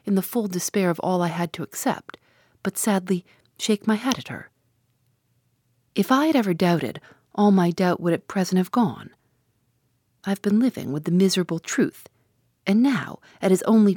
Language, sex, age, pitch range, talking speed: English, female, 40-59, 150-210 Hz, 180 wpm